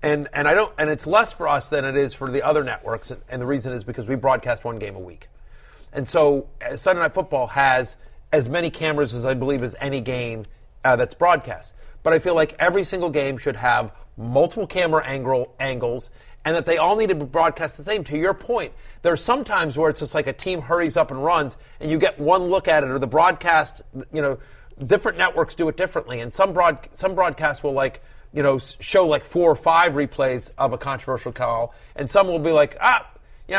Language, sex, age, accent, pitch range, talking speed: English, male, 40-59, American, 135-170 Hz, 230 wpm